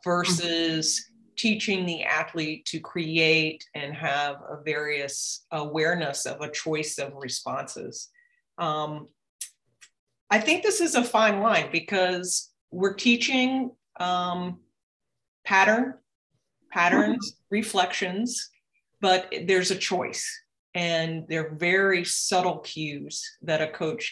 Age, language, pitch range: 40-59, English, 155-205 Hz